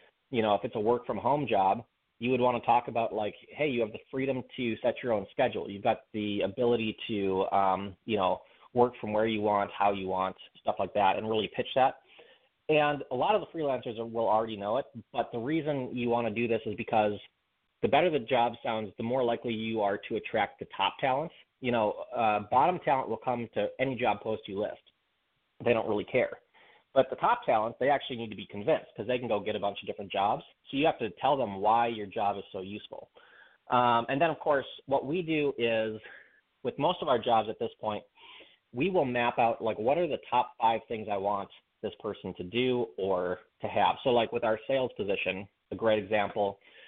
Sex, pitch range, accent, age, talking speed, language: male, 105-125 Hz, American, 30-49, 225 wpm, English